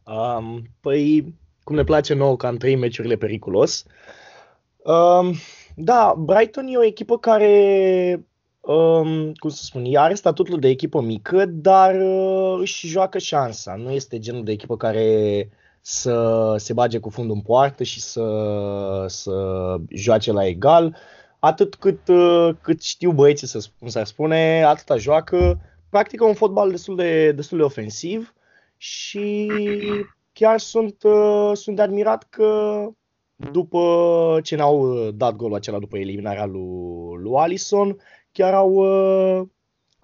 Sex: male